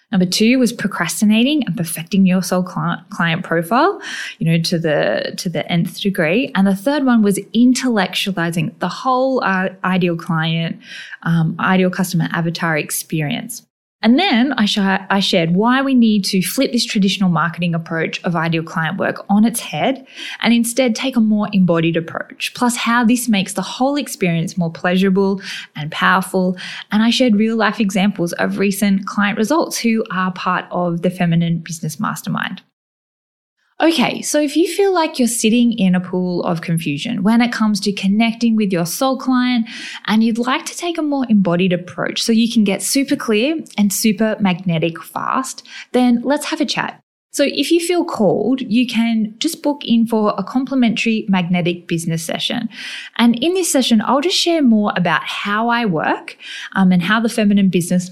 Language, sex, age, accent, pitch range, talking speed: English, female, 10-29, Australian, 180-245 Hz, 180 wpm